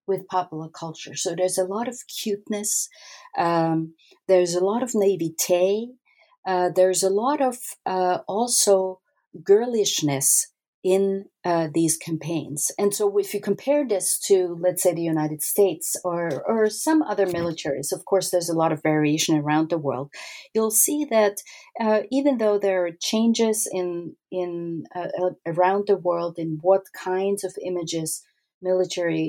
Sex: female